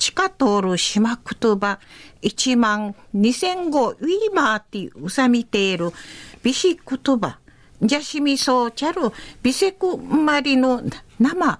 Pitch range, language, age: 230-310 Hz, Japanese, 50-69